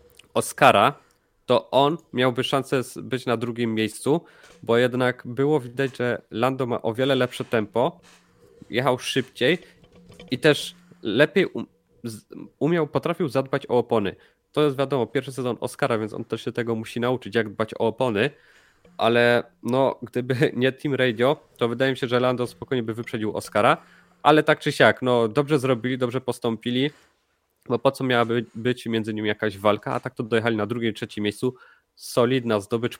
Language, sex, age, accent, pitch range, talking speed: Polish, male, 20-39, native, 110-135 Hz, 170 wpm